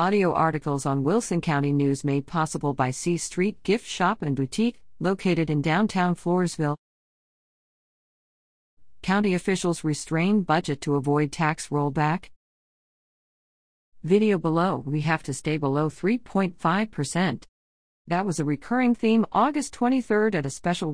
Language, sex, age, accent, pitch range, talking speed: English, female, 50-69, American, 145-195 Hz, 130 wpm